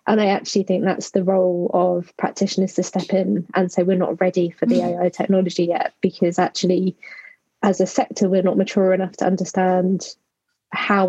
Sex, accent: female, British